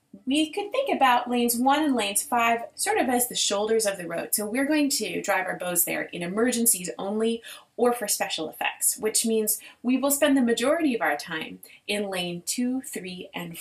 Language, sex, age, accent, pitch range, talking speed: English, female, 30-49, American, 180-275 Hz, 205 wpm